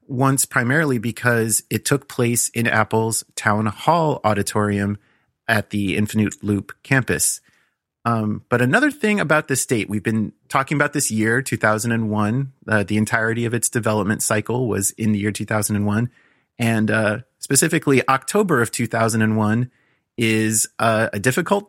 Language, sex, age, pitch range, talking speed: English, male, 30-49, 110-130 Hz, 145 wpm